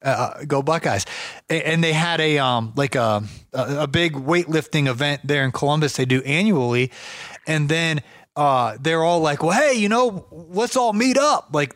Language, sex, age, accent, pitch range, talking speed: English, male, 30-49, American, 145-190 Hz, 180 wpm